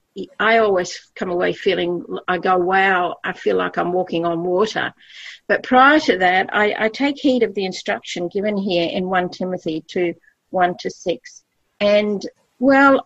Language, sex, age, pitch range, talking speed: English, female, 50-69, 200-250 Hz, 170 wpm